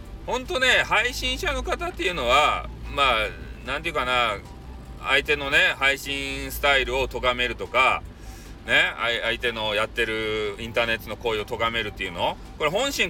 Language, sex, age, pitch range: Japanese, male, 30-49, 115-160 Hz